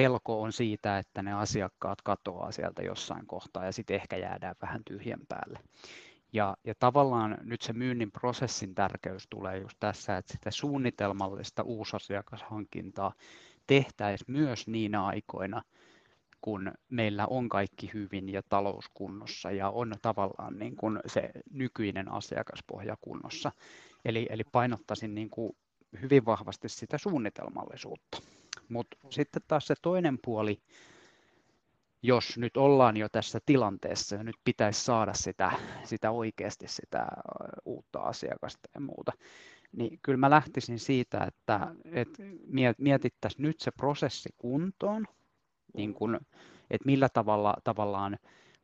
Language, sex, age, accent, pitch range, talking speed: Finnish, male, 20-39, native, 105-130 Hz, 120 wpm